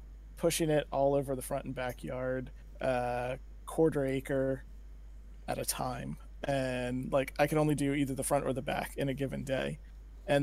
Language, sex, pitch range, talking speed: English, male, 130-155 Hz, 180 wpm